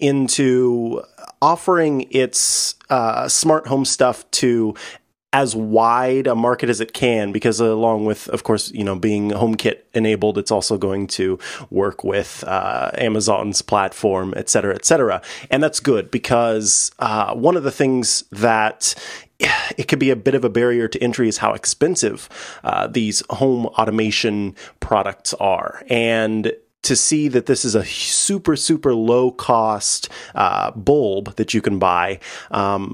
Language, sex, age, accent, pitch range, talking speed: English, male, 20-39, American, 110-135 Hz, 155 wpm